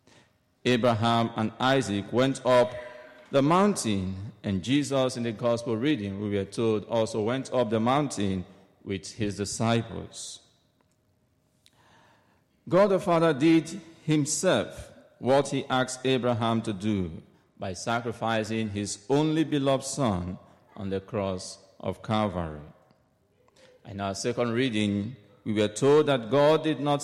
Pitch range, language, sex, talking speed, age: 105-135 Hz, English, male, 125 wpm, 50-69